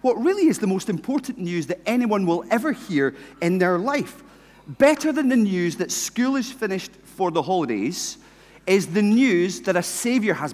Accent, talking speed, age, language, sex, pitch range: British, 190 wpm, 40-59, English, male, 170-245 Hz